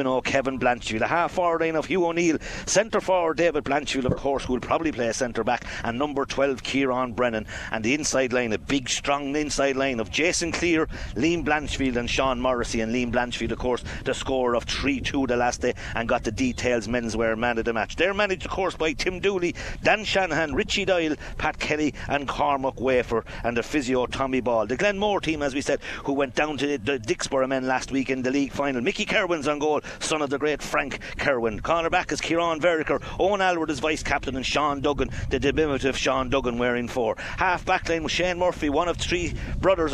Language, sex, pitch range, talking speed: English, male, 125-165 Hz, 215 wpm